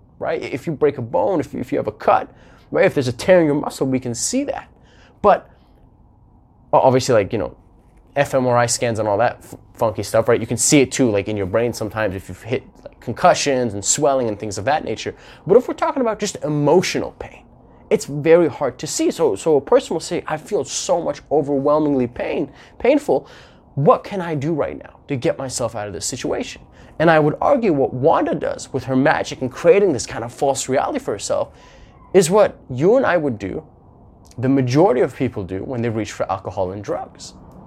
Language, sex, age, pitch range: English, male, 20-39, 120-155 Hz